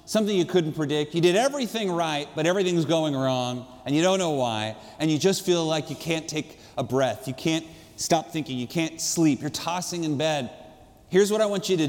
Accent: American